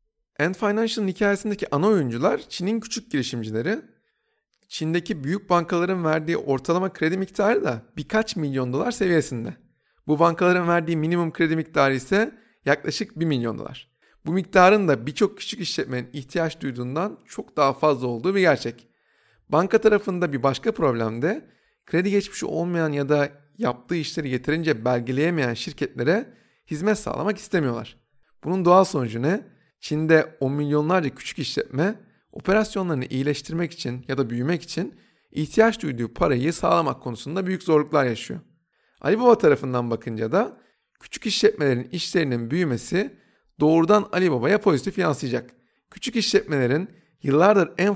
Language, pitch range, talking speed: Turkish, 135-190 Hz, 130 wpm